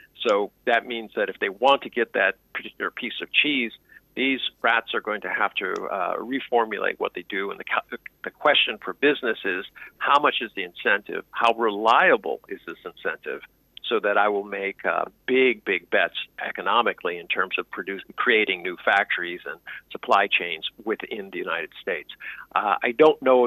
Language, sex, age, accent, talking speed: English, male, 50-69, American, 180 wpm